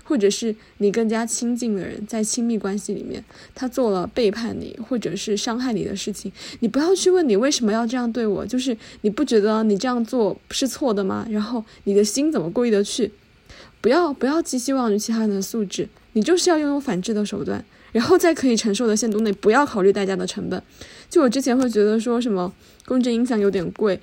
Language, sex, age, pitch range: Chinese, female, 20-39, 205-245 Hz